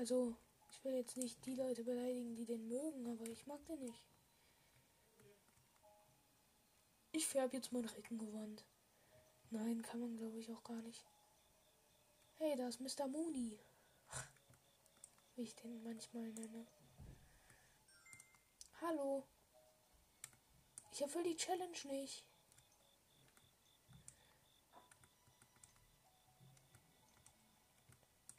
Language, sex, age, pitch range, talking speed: German, female, 10-29, 225-300 Hz, 95 wpm